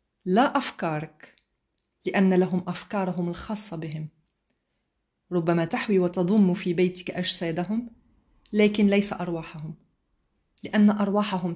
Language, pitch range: Arabic, 175-220 Hz